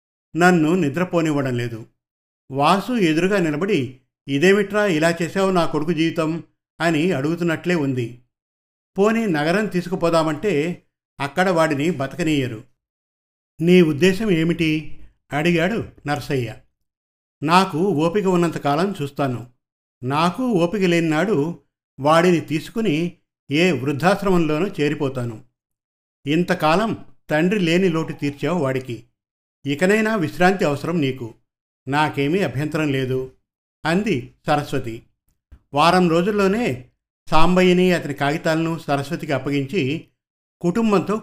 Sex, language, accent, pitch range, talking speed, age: male, Telugu, native, 135-175 Hz, 90 wpm, 50-69